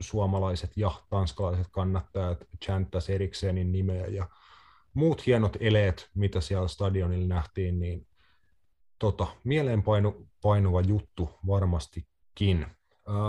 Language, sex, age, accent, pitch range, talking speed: Finnish, male, 30-49, native, 90-100 Hz, 100 wpm